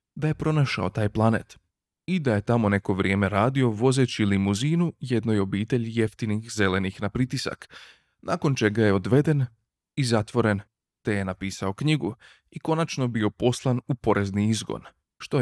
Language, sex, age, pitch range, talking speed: Croatian, male, 20-39, 100-125 Hz, 150 wpm